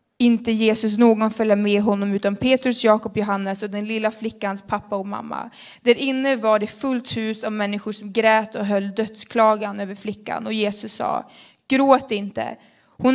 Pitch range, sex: 205-250 Hz, female